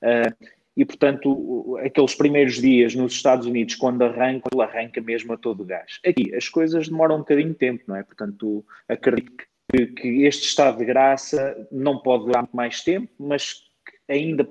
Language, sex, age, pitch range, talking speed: Portuguese, male, 20-39, 115-140 Hz, 180 wpm